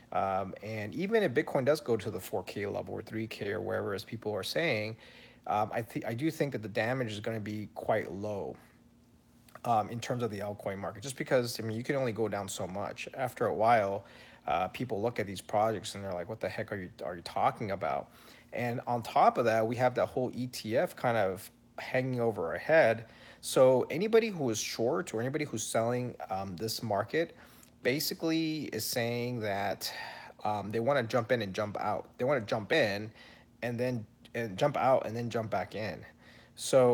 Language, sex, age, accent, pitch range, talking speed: English, male, 30-49, American, 105-125 Hz, 210 wpm